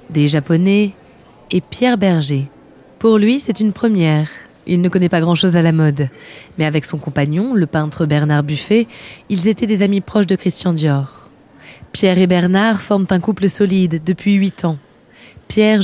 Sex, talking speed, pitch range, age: female, 170 wpm, 165-205 Hz, 20-39